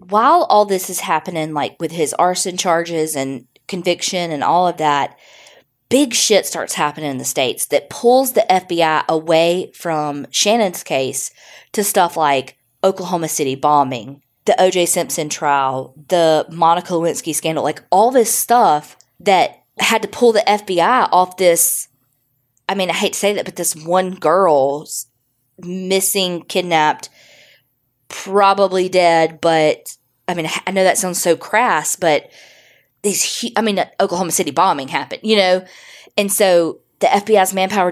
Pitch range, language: 145-185 Hz, English